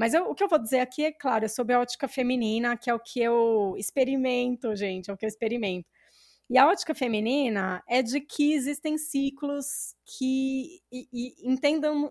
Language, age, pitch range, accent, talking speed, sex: Portuguese, 20-39, 215-275 Hz, Brazilian, 185 wpm, female